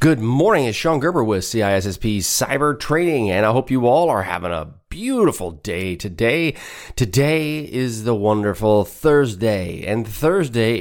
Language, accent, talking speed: English, American, 150 wpm